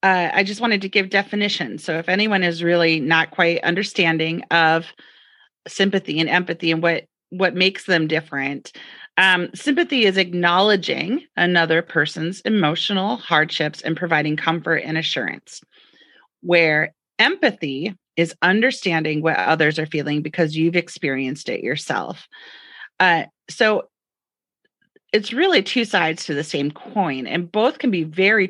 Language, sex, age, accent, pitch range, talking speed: English, female, 30-49, American, 160-195 Hz, 140 wpm